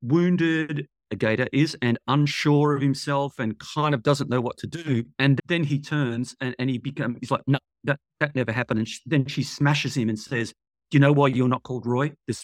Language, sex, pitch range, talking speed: English, male, 115-140 Hz, 230 wpm